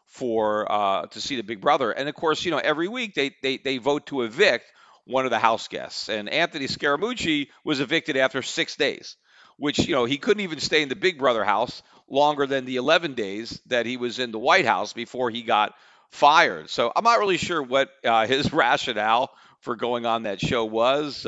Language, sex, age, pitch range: English, male, 50-69, 115-145 Hz